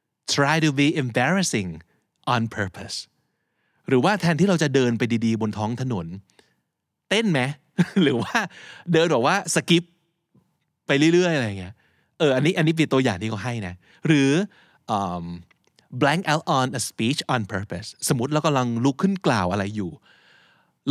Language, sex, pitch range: Thai, male, 110-155 Hz